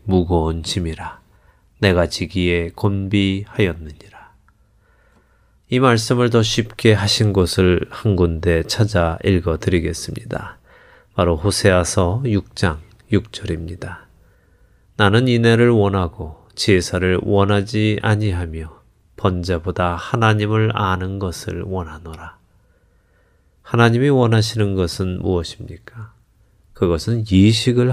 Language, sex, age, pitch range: Korean, male, 30-49, 90-110 Hz